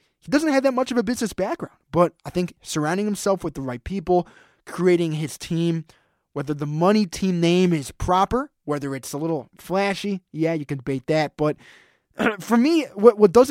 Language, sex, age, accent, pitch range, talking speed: English, male, 20-39, American, 170-220 Hz, 195 wpm